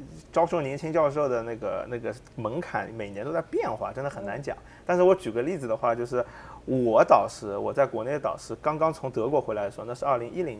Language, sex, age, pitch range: Chinese, male, 30-49, 120-170 Hz